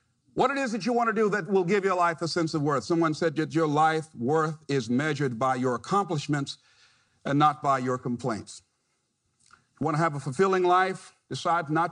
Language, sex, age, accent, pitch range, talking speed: English, male, 50-69, American, 150-235 Hz, 210 wpm